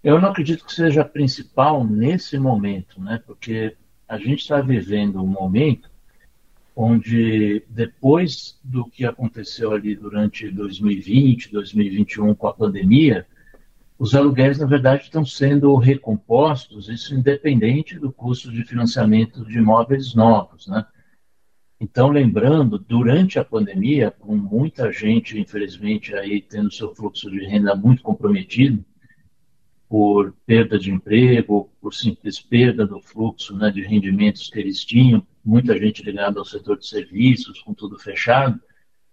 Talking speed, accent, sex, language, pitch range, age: 135 wpm, Brazilian, male, Portuguese, 110-140 Hz, 60-79